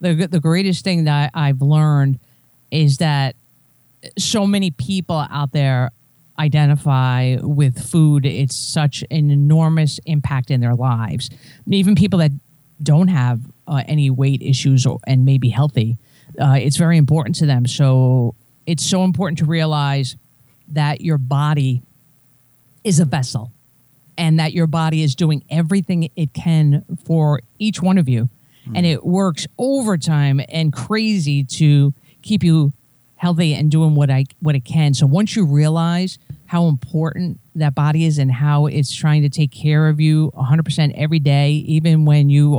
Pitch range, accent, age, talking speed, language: 135-160 Hz, American, 40-59, 160 wpm, English